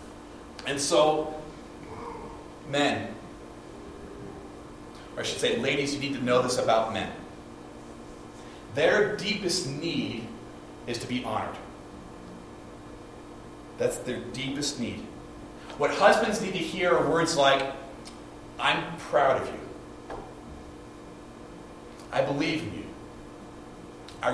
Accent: American